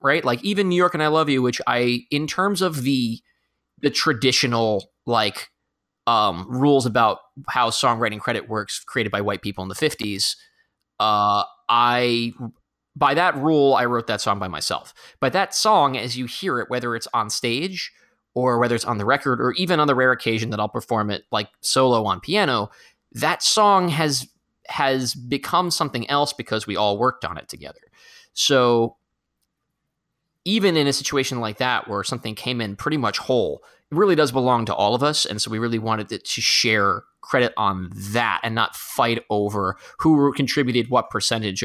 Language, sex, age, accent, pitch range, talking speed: English, male, 30-49, American, 110-145 Hz, 185 wpm